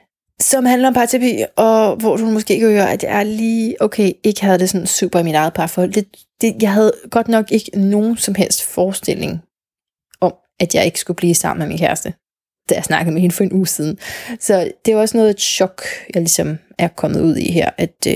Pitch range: 180-215 Hz